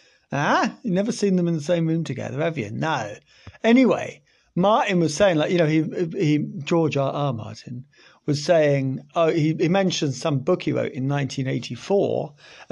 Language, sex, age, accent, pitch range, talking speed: English, male, 40-59, British, 140-210 Hz, 185 wpm